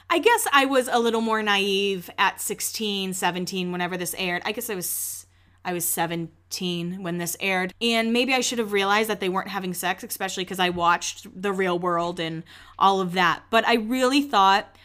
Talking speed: 200 wpm